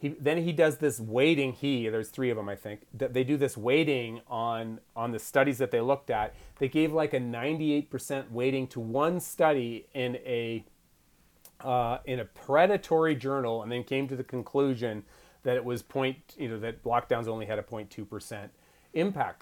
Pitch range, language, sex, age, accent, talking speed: 120-155 Hz, English, male, 30-49, American, 180 wpm